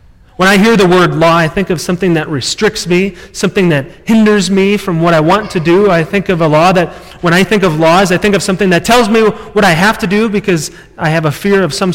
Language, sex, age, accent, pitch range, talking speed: English, male, 30-49, American, 150-195 Hz, 265 wpm